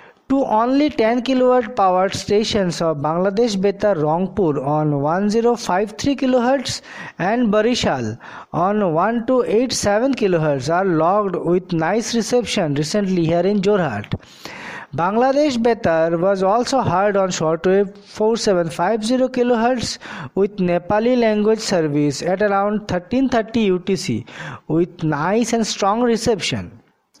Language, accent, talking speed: English, Indian, 110 wpm